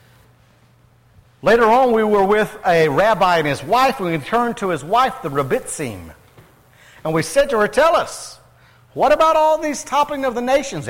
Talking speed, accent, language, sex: 180 wpm, American, English, male